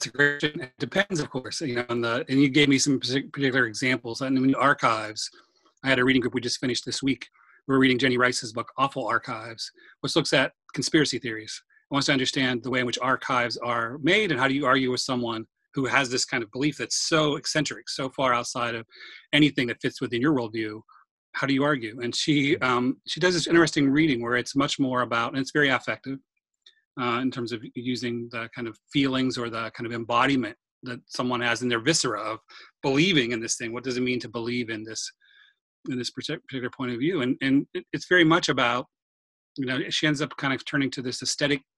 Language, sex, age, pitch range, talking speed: English, male, 30-49, 120-145 Hz, 225 wpm